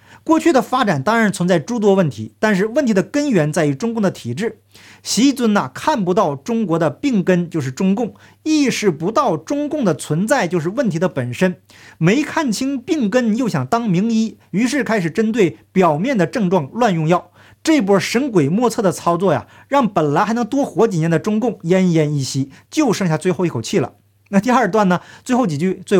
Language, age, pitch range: Chinese, 50-69, 165-245 Hz